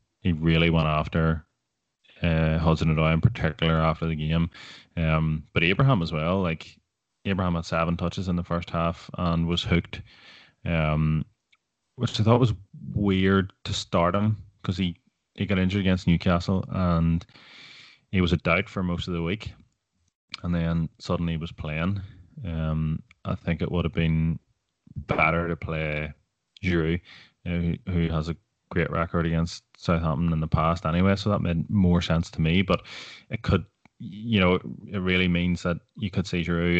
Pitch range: 80-90 Hz